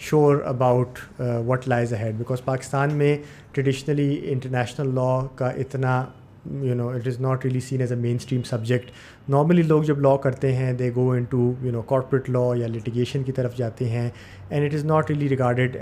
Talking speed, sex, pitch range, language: 180 wpm, male, 125-145 Hz, Urdu